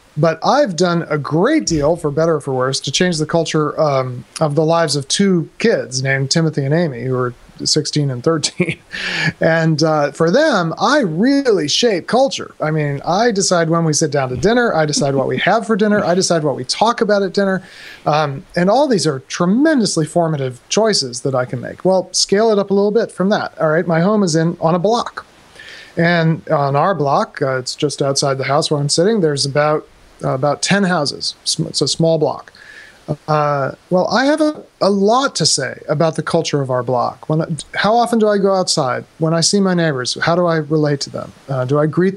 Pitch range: 150-190 Hz